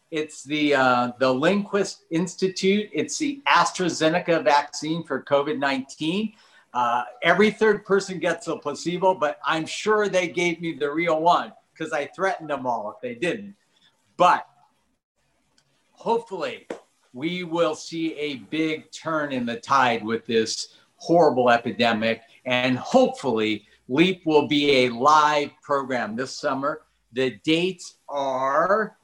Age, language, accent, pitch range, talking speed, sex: 50-69, English, American, 130-175 Hz, 130 wpm, male